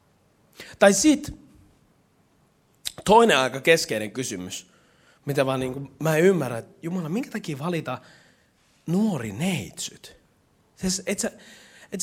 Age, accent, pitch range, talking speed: 30-49, native, 130-215 Hz, 105 wpm